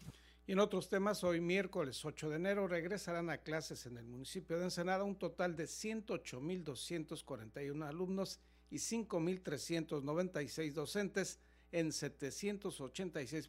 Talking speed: 120 wpm